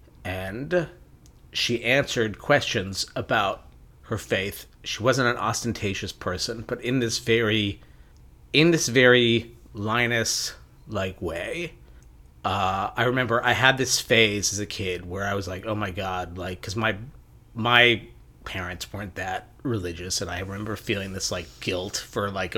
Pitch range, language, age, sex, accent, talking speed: 100-125 Hz, English, 30-49, male, American, 150 wpm